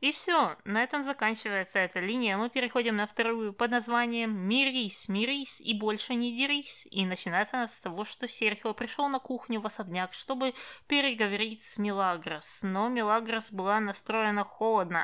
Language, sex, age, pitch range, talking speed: Russian, female, 20-39, 190-230 Hz, 160 wpm